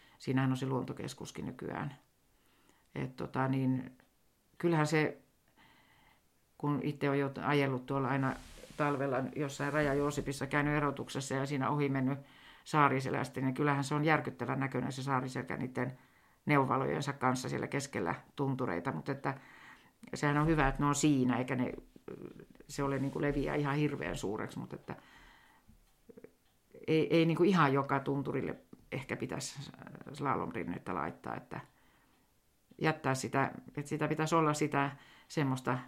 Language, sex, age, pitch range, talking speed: Finnish, female, 50-69, 130-145 Hz, 130 wpm